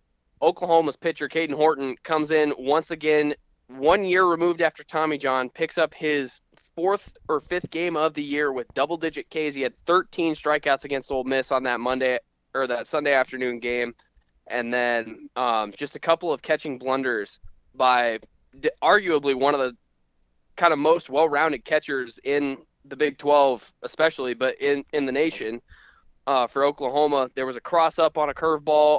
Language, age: English, 20-39